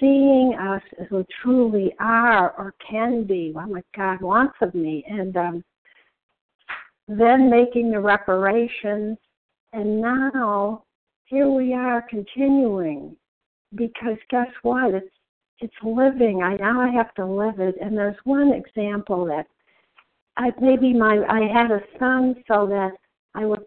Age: 60-79